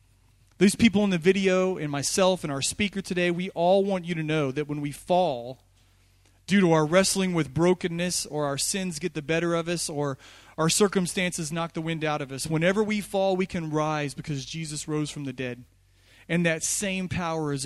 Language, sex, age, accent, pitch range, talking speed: English, male, 30-49, American, 140-175 Hz, 205 wpm